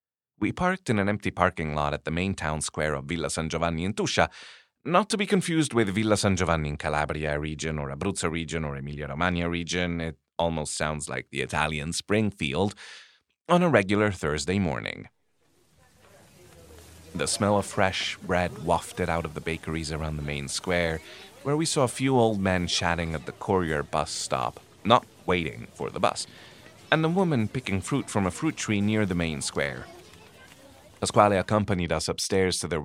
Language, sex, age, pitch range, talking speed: English, male, 30-49, 80-110 Hz, 180 wpm